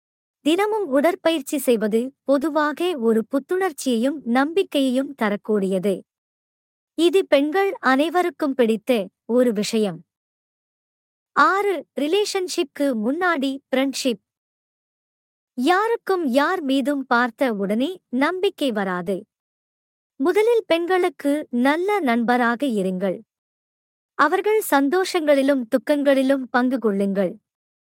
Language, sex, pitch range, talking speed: Tamil, male, 230-325 Hz, 75 wpm